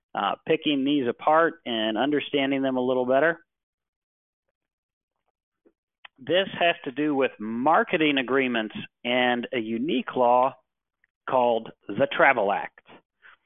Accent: American